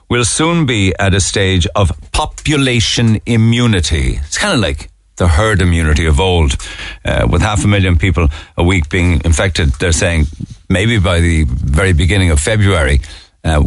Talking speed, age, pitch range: 170 wpm, 60-79, 85-105 Hz